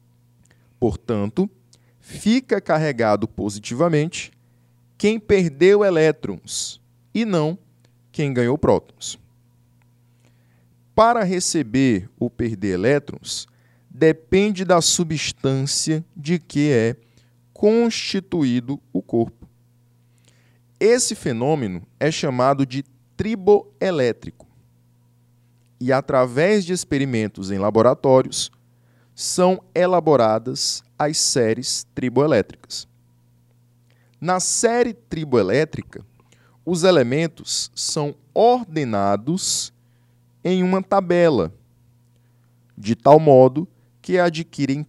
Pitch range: 120-160 Hz